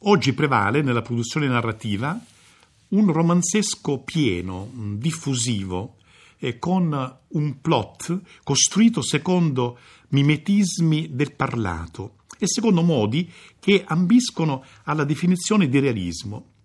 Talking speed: 95 wpm